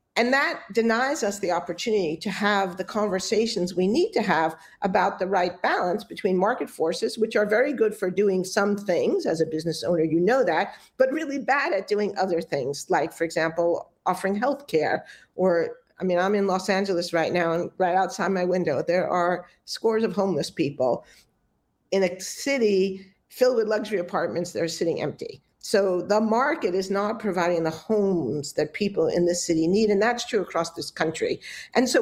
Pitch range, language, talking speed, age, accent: 175-215 Hz, English, 190 wpm, 50-69, American